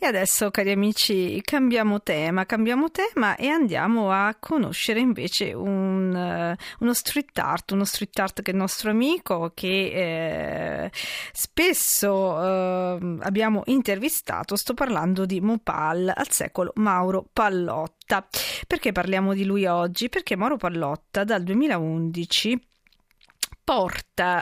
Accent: native